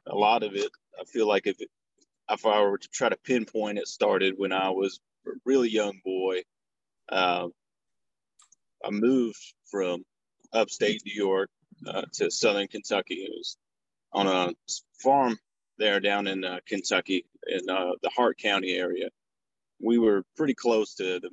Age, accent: 30-49, American